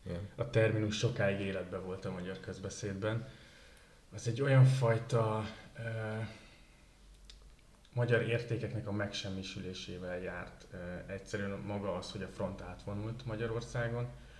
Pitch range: 95-110 Hz